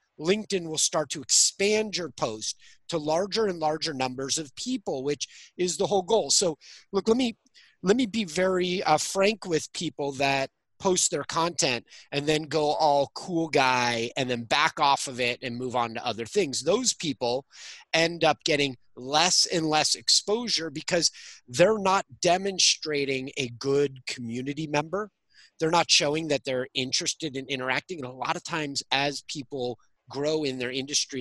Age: 30-49